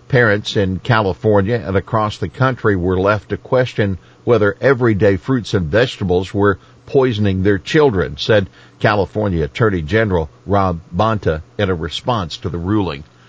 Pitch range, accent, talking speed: 95-115 Hz, American, 145 wpm